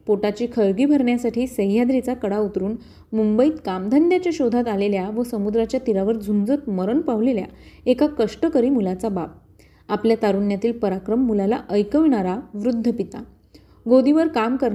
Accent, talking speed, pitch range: native, 65 wpm, 205-260 Hz